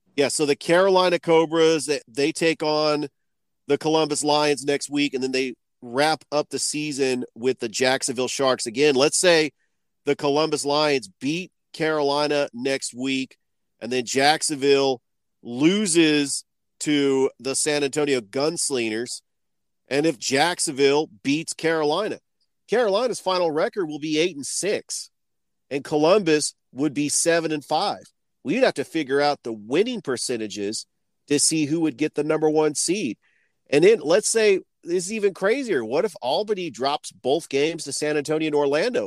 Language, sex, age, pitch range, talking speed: English, male, 40-59, 140-175 Hz, 150 wpm